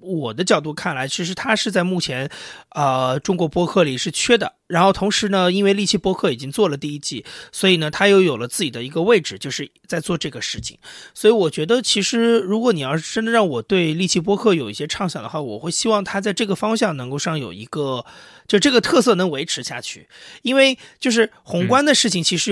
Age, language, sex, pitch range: 30-49, Chinese, male, 155-220 Hz